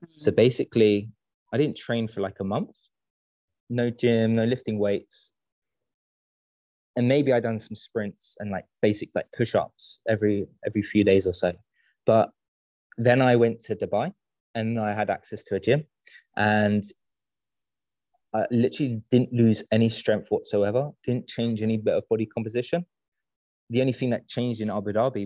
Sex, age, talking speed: male, 20-39, 160 wpm